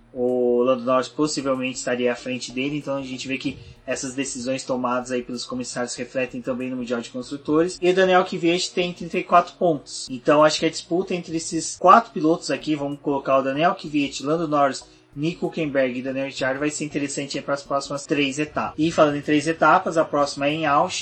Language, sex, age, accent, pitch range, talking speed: Portuguese, male, 20-39, Brazilian, 135-155 Hz, 205 wpm